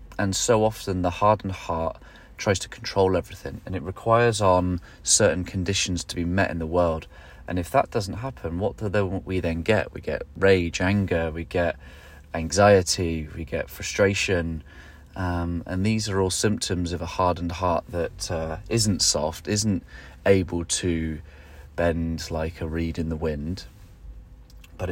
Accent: British